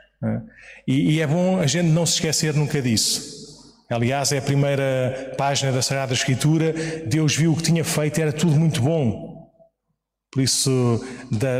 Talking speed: 170 wpm